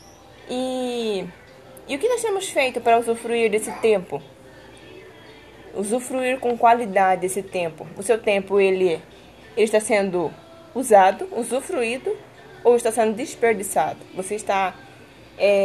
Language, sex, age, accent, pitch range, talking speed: Portuguese, female, 20-39, Brazilian, 200-255 Hz, 125 wpm